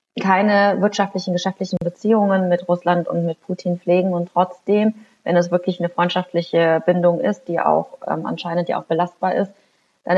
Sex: female